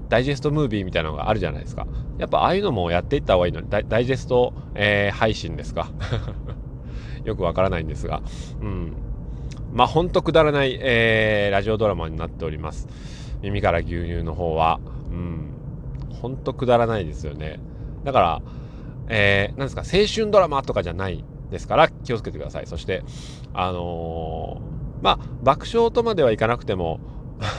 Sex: male